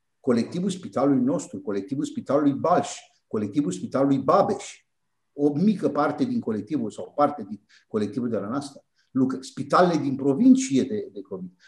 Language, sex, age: Romanian, male, 50-69